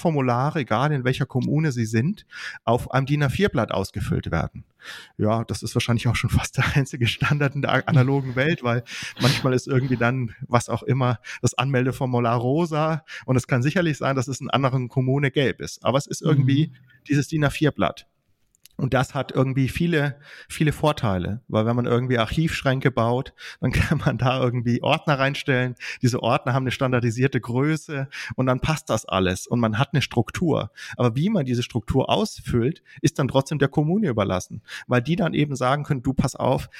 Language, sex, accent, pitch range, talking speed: German, male, German, 120-145 Hz, 185 wpm